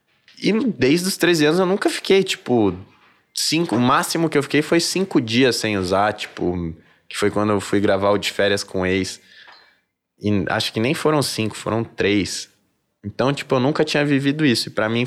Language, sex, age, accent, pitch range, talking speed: Portuguese, male, 20-39, Brazilian, 100-135 Hz, 205 wpm